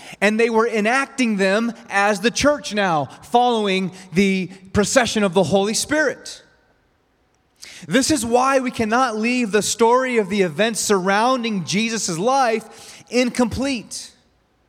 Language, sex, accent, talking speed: English, male, American, 125 wpm